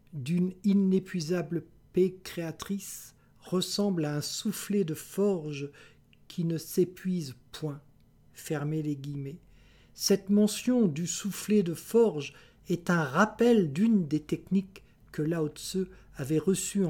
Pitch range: 145-185 Hz